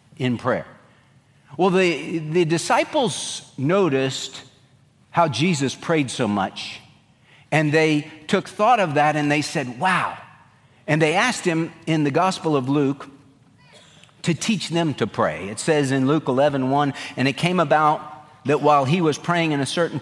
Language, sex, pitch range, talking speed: English, male, 140-180 Hz, 160 wpm